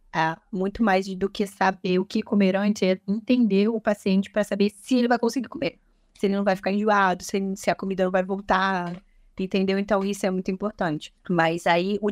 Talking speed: 205 wpm